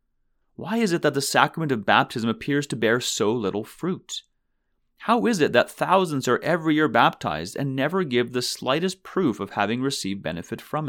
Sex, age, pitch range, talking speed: male, 30-49, 105-140 Hz, 185 wpm